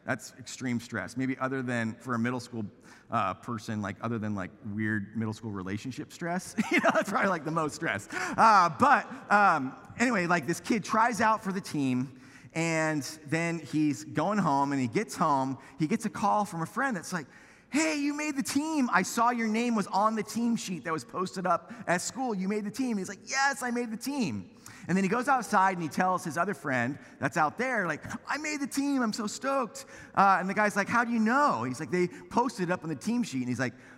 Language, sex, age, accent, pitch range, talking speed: English, male, 30-49, American, 140-220 Hz, 235 wpm